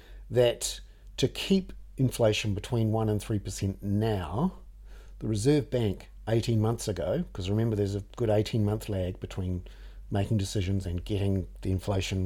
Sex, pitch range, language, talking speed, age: male, 100-120 Hz, English, 145 wpm, 50-69